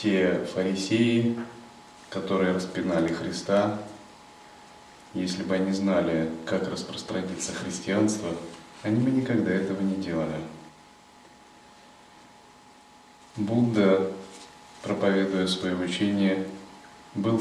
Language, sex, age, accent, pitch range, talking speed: Russian, male, 20-39, native, 85-105 Hz, 80 wpm